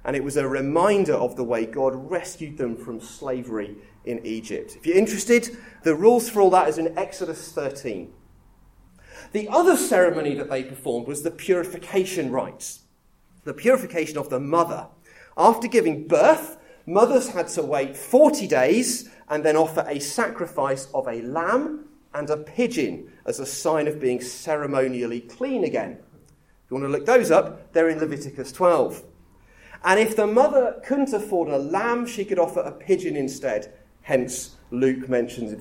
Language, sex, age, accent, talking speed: English, male, 30-49, British, 165 wpm